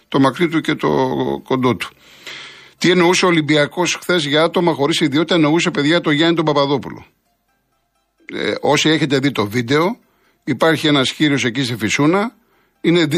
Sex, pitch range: male, 135-175 Hz